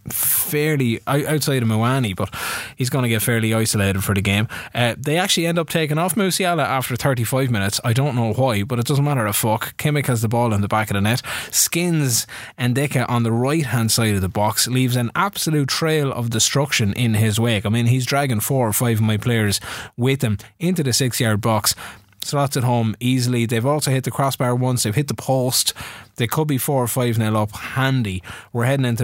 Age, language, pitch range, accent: 20-39, English, 110-140 Hz, Irish